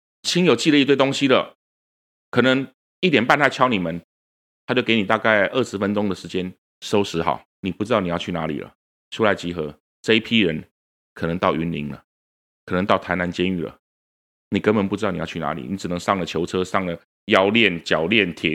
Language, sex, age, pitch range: Chinese, male, 30-49, 80-105 Hz